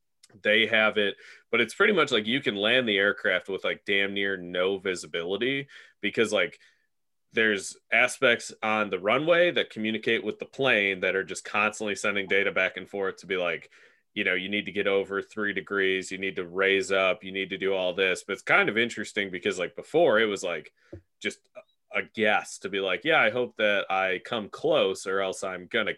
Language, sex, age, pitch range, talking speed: English, male, 30-49, 95-130 Hz, 210 wpm